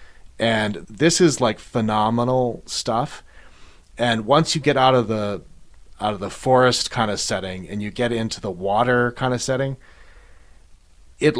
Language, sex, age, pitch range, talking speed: English, male, 30-49, 100-125 Hz, 160 wpm